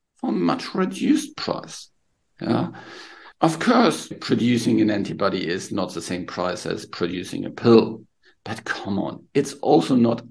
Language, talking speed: English, 150 wpm